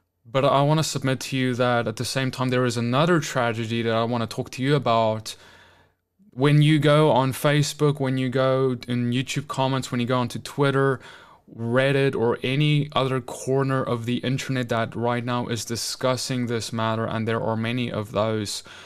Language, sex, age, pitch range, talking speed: English, male, 20-39, 120-145 Hz, 195 wpm